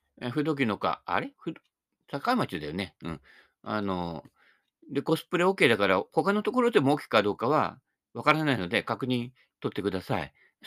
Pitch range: 115-195 Hz